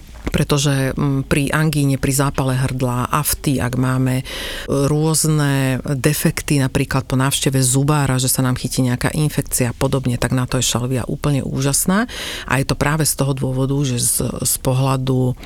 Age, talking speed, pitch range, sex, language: 40-59, 160 wpm, 125-140 Hz, female, Slovak